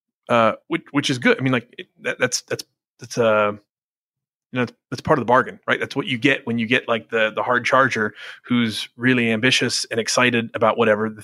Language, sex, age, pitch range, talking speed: English, male, 30-49, 110-125 Hz, 225 wpm